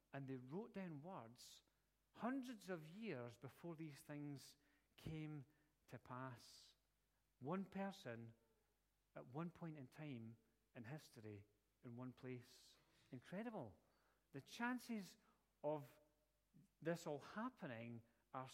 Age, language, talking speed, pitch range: 40-59, English, 110 wpm, 125-155 Hz